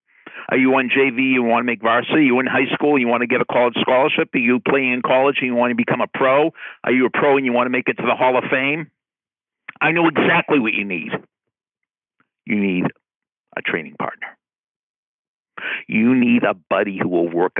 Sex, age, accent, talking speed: male, 50-69, American, 220 wpm